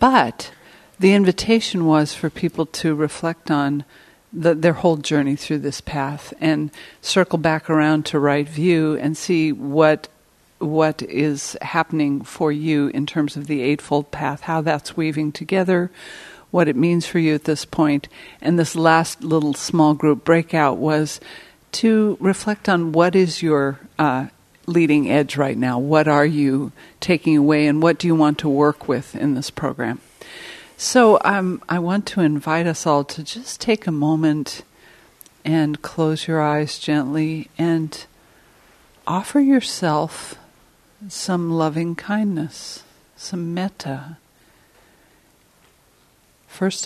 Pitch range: 150-170 Hz